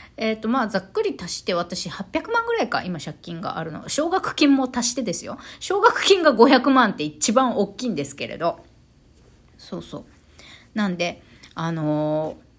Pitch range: 175-285 Hz